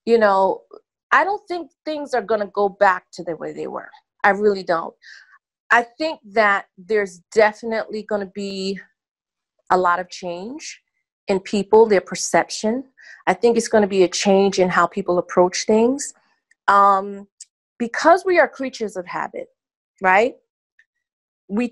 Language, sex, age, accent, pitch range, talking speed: English, female, 30-49, American, 195-265 Hz, 155 wpm